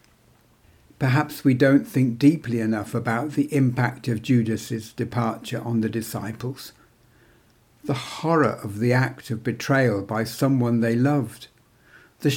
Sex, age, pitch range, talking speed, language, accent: male, 60-79, 115-140 Hz, 130 wpm, English, British